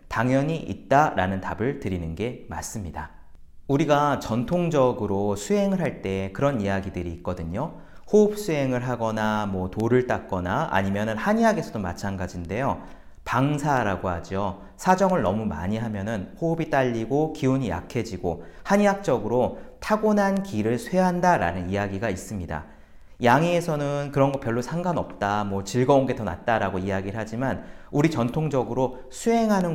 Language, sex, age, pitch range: Korean, male, 40-59, 100-160 Hz